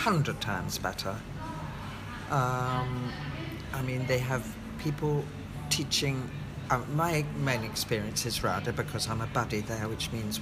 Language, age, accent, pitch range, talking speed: English, 60-79, British, 115-150 Hz, 130 wpm